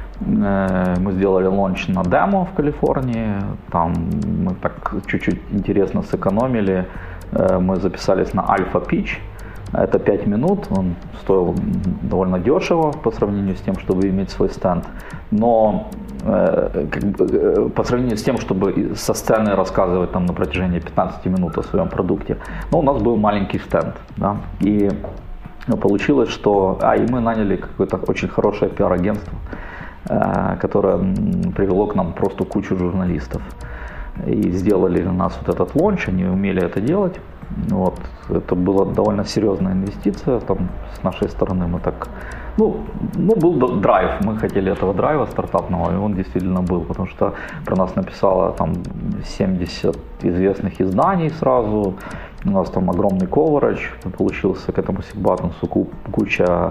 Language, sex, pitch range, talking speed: Ukrainian, male, 90-110 Hz, 140 wpm